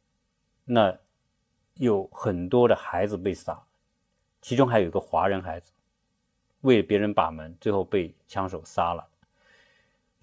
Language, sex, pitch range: Chinese, male, 95-155 Hz